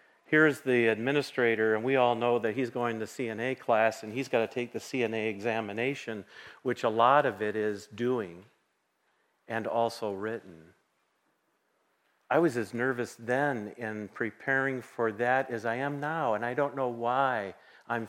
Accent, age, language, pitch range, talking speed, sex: American, 50-69, English, 115-145 Hz, 165 wpm, male